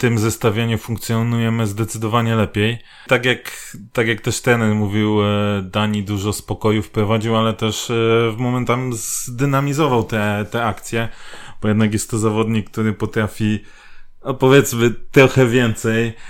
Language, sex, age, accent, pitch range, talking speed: Polish, male, 20-39, native, 110-130 Hz, 135 wpm